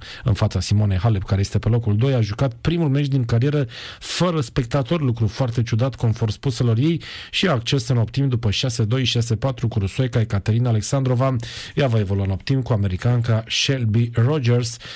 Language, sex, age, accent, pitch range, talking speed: Romanian, male, 40-59, native, 115-150 Hz, 175 wpm